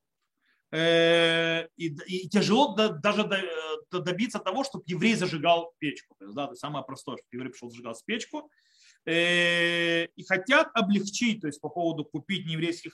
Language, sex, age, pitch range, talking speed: Russian, male, 30-49, 150-215 Hz, 130 wpm